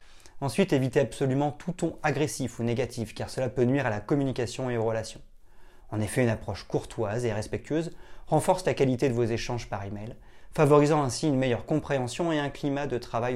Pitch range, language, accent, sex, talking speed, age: 110-145 Hz, French, French, male, 195 wpm, 30-49